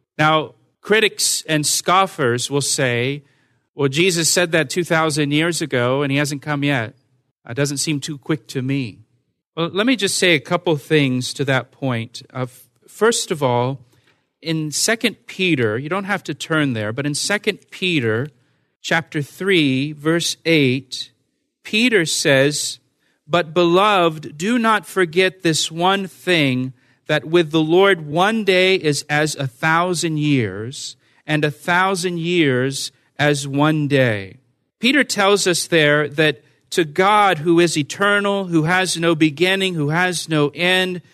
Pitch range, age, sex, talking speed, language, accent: 135-180 Hz, 40-59, male, 150 wpm, English, American